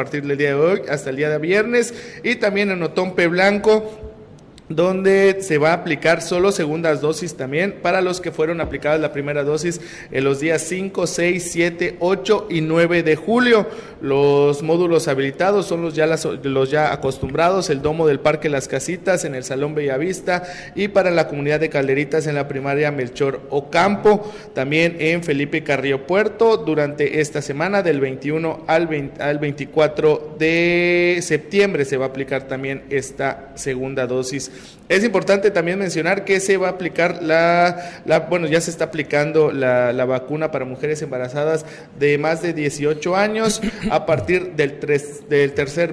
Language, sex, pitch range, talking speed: Spanish, male, 145-180 Hz, 175 wpm